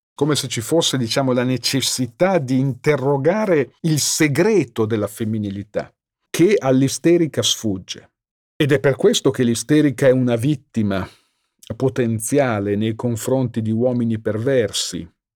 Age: 50-69